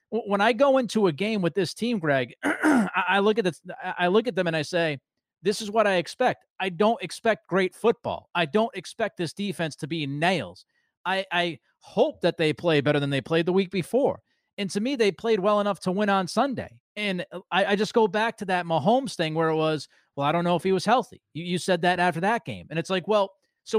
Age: 30-49